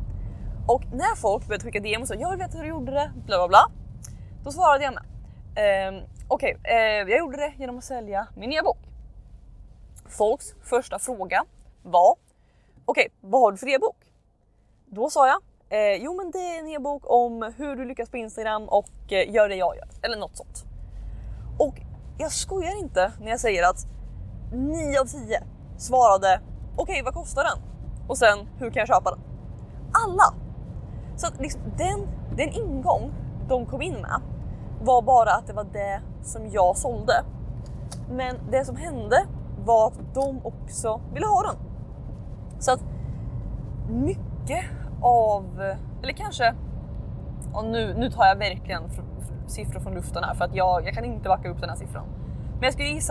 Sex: female